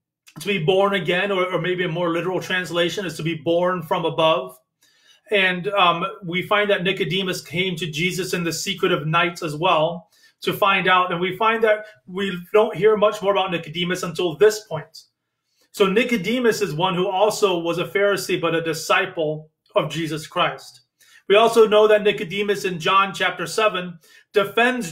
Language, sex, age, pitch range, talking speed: English, male, 30-49, 170-205 Hz, 180 wpm